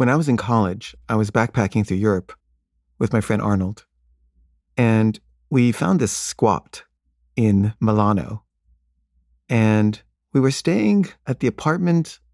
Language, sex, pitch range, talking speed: English, male, 95-125 Hz, 135 wpm